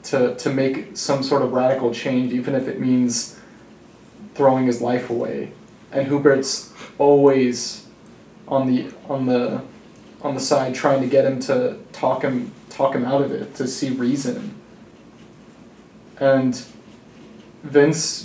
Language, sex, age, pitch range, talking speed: English, male, 20-39, 125-145 Hz, 140 wpm